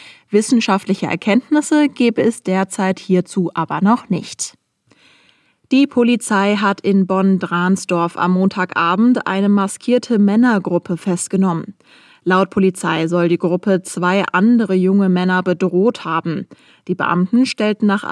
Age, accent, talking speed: 20-39, German, 120 wpm